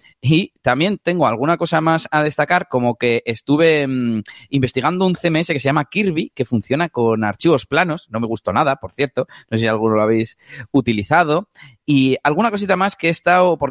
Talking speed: 195 wpm